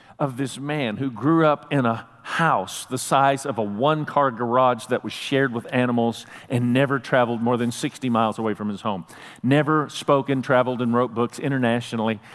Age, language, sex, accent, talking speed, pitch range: 50-69, English, male, American, 190 wpm, 125-155 Hz